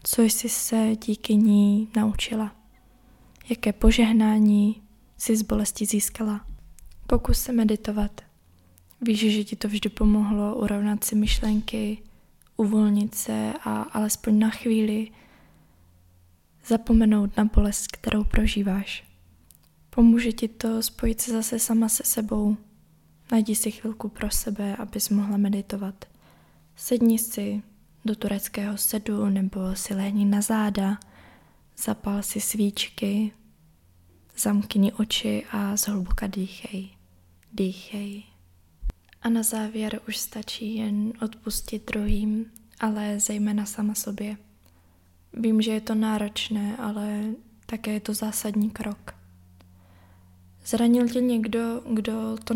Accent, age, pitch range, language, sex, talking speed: native, 20-39, 195-220 Hz, Czech, female, 110 wpm